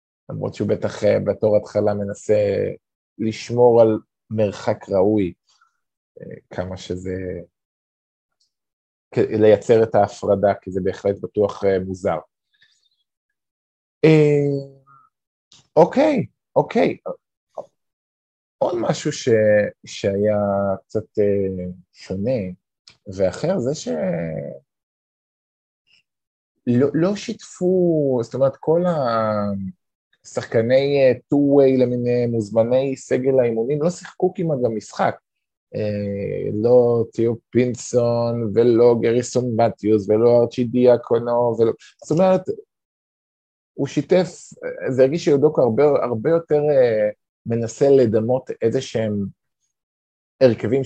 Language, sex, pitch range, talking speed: Hebrew, male, 105-145 Hz, 90 wpm